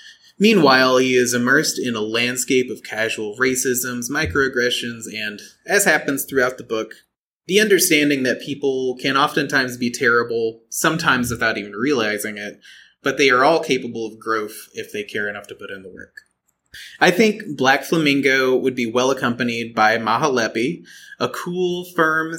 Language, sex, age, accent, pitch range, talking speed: English, male, 30-49, American, 115-150 Hz, 160 wpm